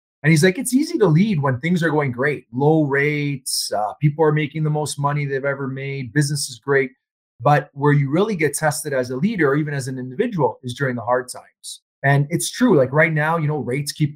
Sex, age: male, 30-49